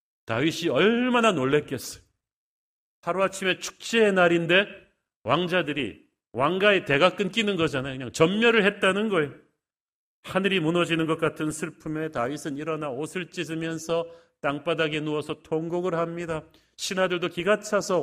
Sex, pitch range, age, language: male, 115-165 Hz, 40-59, Korean